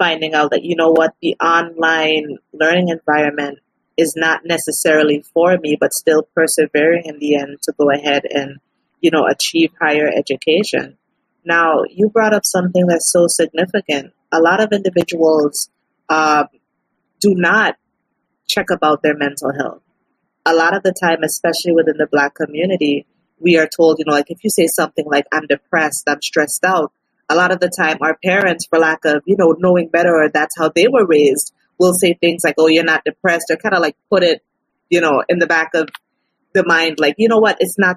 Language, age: English, 30-49